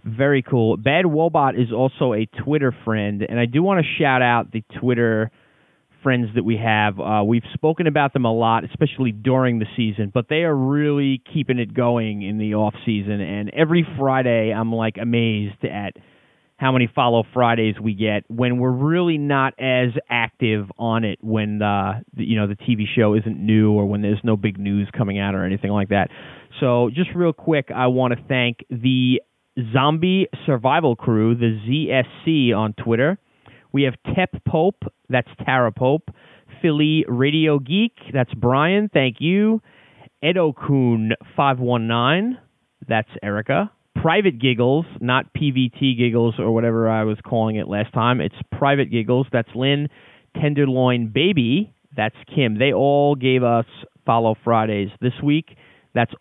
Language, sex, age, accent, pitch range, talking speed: English, male, 30-49, American, 115-145 Hz, 160 wpm